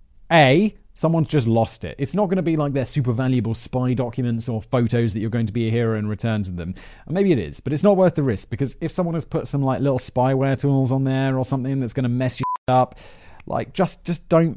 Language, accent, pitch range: English, British, 110-145 Hz